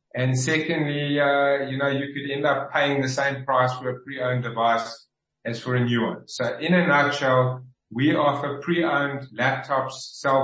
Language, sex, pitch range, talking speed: English, male, 130-155 Hz, 180 wpm